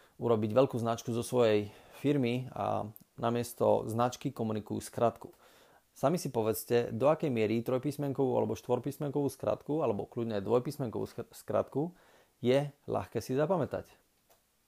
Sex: male